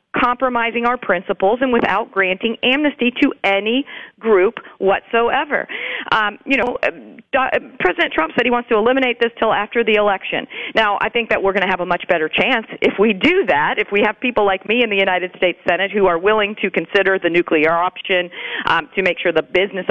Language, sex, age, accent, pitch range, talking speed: English, female, 40-59, American, 200-255 Hz, 200 wpm